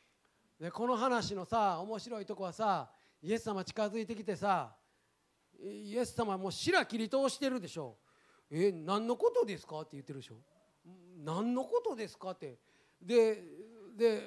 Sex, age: male, 40-59